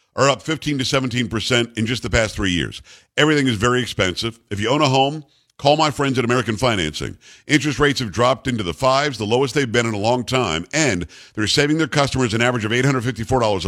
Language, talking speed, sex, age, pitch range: English, 220 wpm, male, 50-69, 115-145 Hz